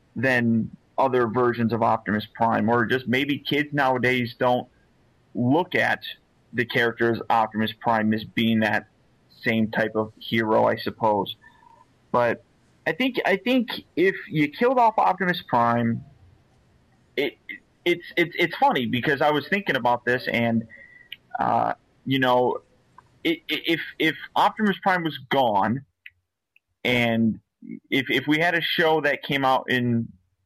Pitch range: 115-160 Hz